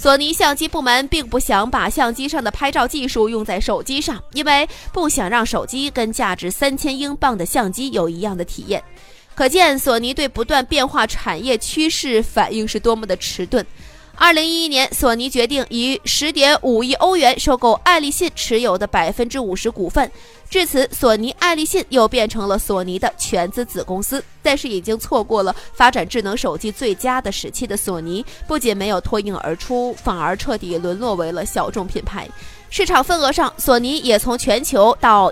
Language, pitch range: Chinese, 215-285 Hz